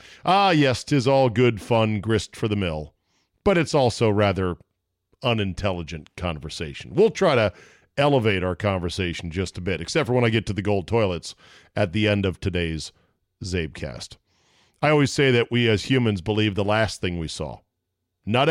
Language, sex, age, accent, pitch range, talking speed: English, male, 40-59, American, 95-120 Hz, 175 wpm